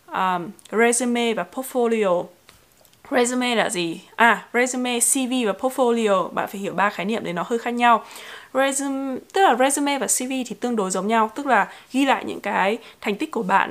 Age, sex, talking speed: 20-39, female, 195 wpm